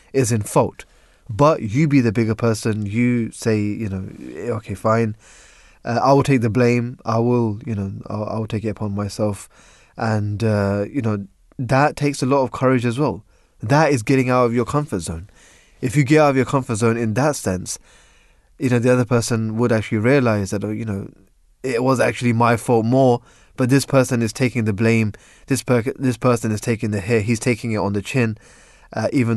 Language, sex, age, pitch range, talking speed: English, male, 20-39, 105-125 Hz, 210 wpm